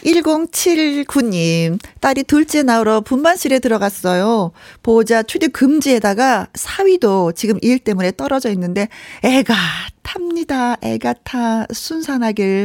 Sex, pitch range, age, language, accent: female, 180-260 Hz, 40-59, Korean, native